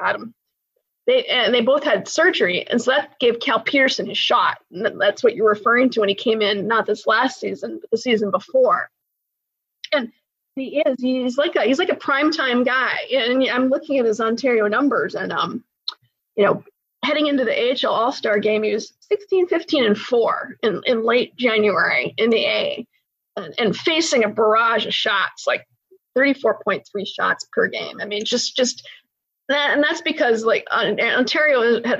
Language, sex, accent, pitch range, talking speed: English, female, American, 215-275 Hz, 185 wpm